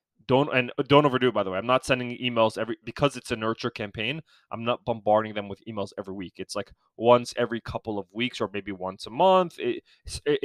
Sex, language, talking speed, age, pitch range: male, English, 225 wpm, 20-39, 105-130 Hz